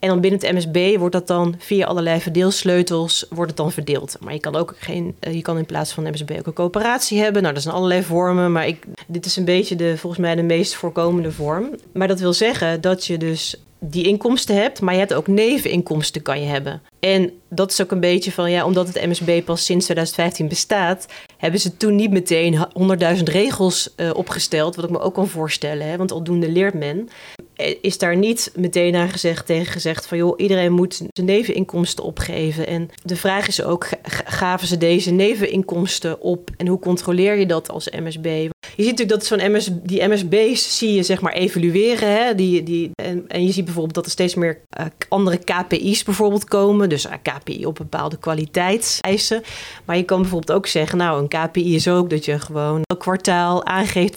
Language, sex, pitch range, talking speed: Dutch, female, 165-195 Hz, 205 wpm